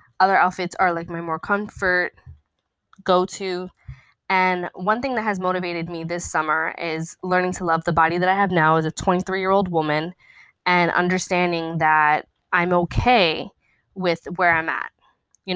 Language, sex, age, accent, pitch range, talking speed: English, female, 10-29, American, 170-195 Hz, 160 wpm